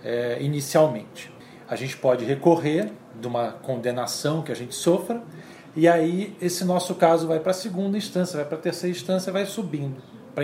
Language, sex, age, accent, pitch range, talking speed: Portuguese, male, 40-59, Brazilian, 140-185 Hz, 165 wpm